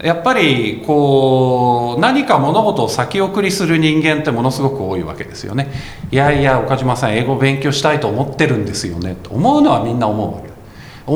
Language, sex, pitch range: Japanese, male, 110-165 Hz